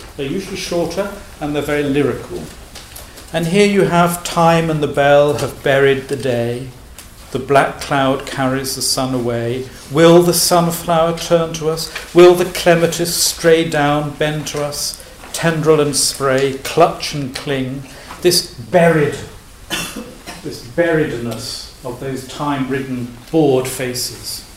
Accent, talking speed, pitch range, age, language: British, 135 wpm, 125-165 Hz, 50-69, English